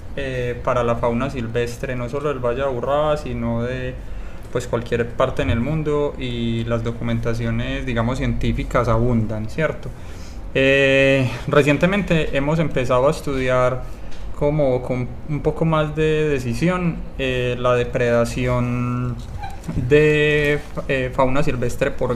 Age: 20-39